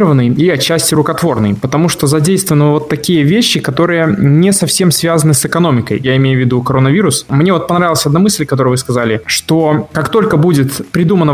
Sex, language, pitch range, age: male, Russian, 130-165 Hz, 20-39